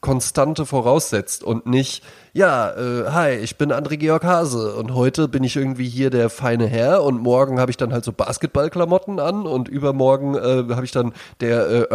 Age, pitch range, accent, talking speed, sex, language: 20-39, 110-135 Hz, German, 190 wpm, male, German